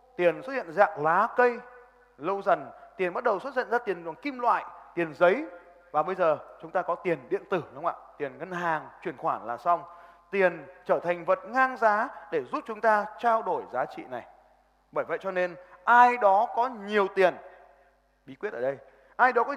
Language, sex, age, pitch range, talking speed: Vietnamese, male, 20-39, 165-220 Hz, 215 wpm